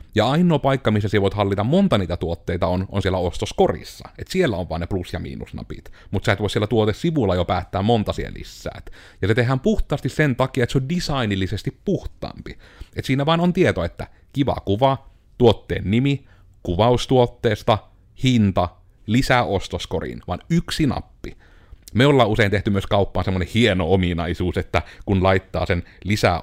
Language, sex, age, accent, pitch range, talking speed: Finnish, male, 30-49, native, 95-125 Hz, 170 wpm